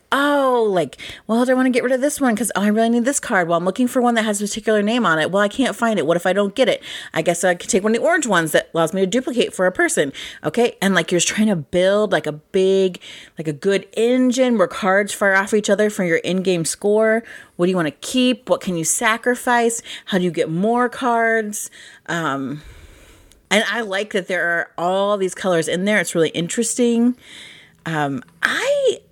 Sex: female